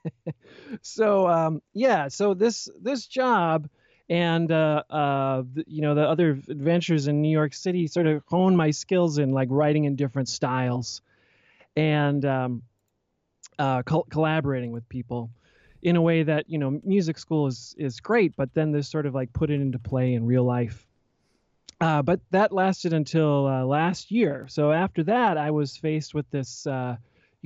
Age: 30-49